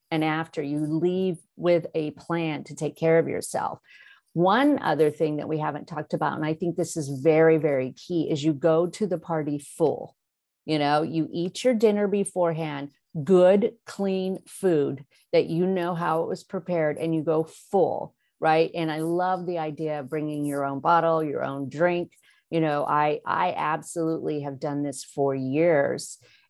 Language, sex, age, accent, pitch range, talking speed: English, female, 50-69, American, 155-195 Hz, 180 wpm